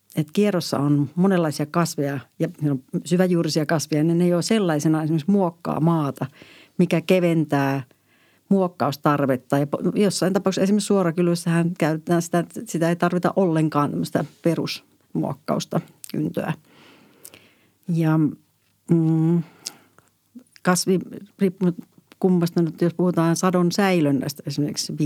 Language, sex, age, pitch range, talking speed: Finnish, female, 60-79, 150-175 Hz, 105 wpm